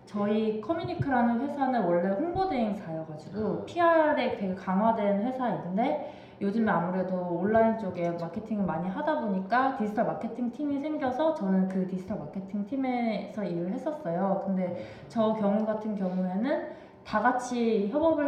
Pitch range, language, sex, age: 185-250 Hz, Korean, female, 20-39